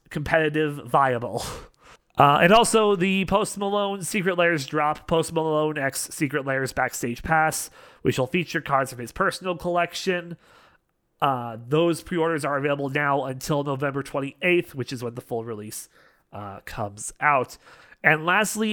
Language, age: English, 30-49